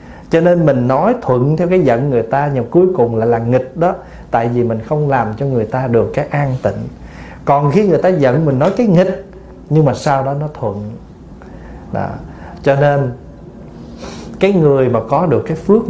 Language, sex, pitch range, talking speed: Vietnamese, male, 125-180 Hz, 210 wpm